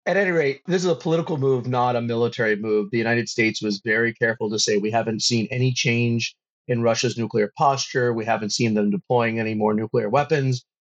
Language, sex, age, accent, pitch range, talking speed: English, male, 40-59, American, 120-140 Hz, 210 wpm